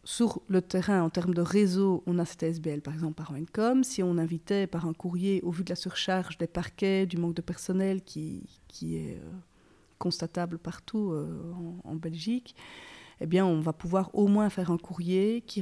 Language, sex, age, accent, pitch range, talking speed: French, female, 40-59, French, 170-200 Hz, 195 wpm